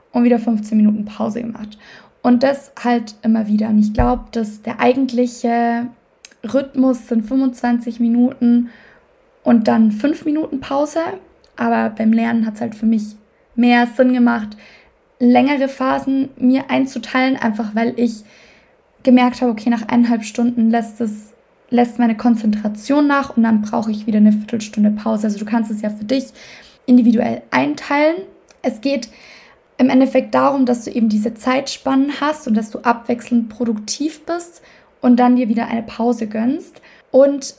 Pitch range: 225-265 Hz